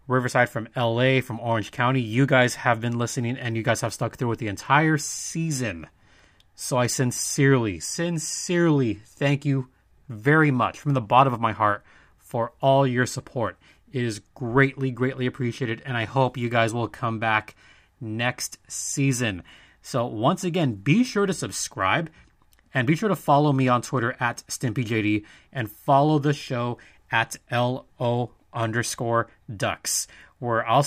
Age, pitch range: 30-49, 115-140 Hz